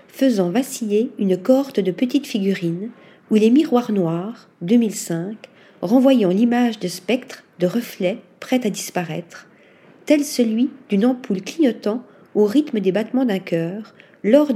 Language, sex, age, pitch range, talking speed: French, female, 40-59, 190-255 Hz, 135 wpm